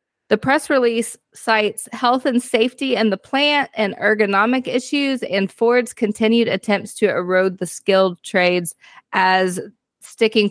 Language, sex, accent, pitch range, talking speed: English, female, American, 180-220 Hz, 135 wpm